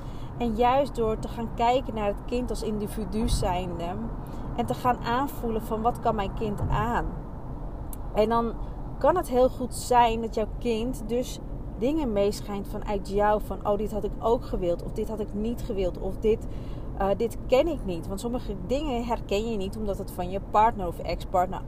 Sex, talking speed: female, 195 wpm